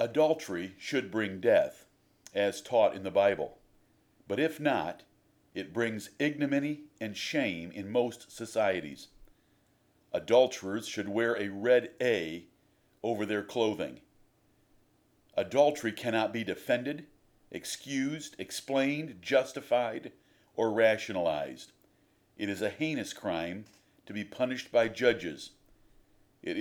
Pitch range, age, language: 105-135 Hz, 50-69, English